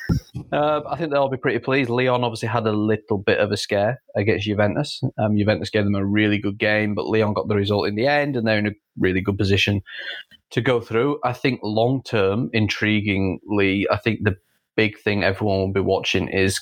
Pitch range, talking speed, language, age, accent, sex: 100-115 Hz, 215 wpm, English, 20-39, British, male